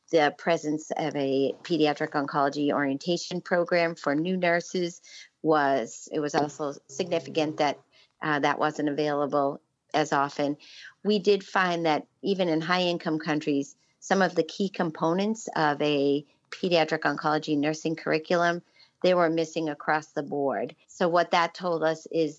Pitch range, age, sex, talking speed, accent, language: 145-170 Hz, 40-59, female, 145 wpm, American, English